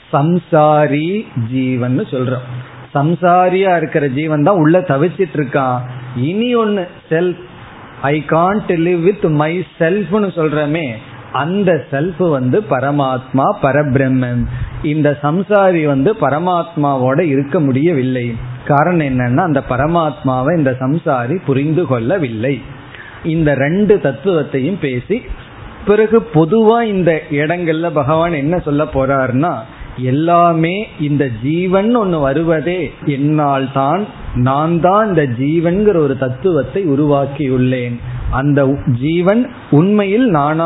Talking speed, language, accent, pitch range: 55 wpm, Tamil, native, 135-175 Hz